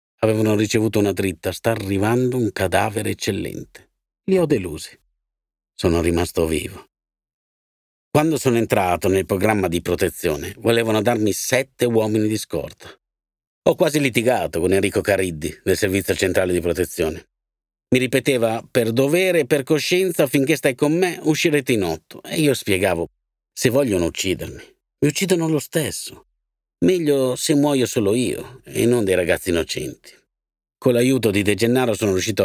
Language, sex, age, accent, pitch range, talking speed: Italian, male, 50-69, native, 95-125 Hz, 145 wpm